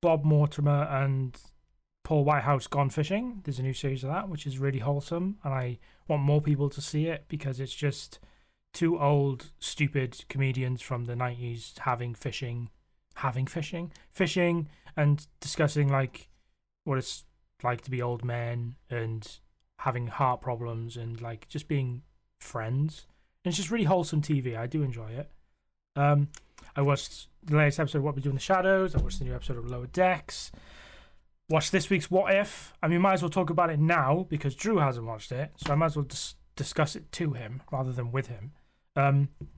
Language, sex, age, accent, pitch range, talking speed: English, male, 20-39, British, 125-155 Hz, 185 wpm